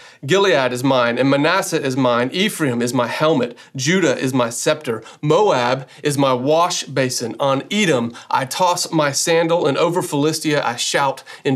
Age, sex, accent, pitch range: 40-59, male, American, 130-165 Hz